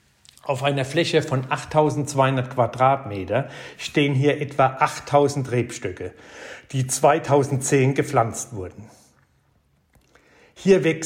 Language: German